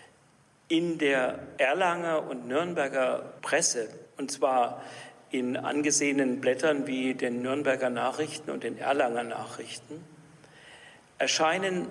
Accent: German